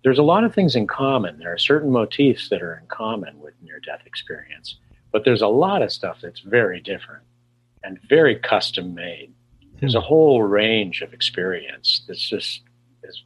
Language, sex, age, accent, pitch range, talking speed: English, male, 50-69, American, 105-120 Hz, 175 wpm